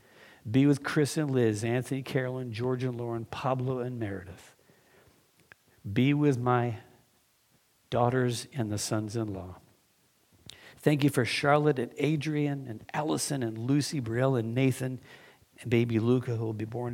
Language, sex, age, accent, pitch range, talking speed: English, male, 60-79, American, 115-145 Hz, 140 wpm